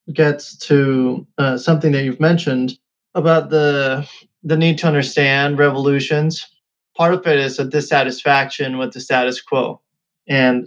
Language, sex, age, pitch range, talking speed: English, male, 30-49, 135-160 Hz, 140 wpm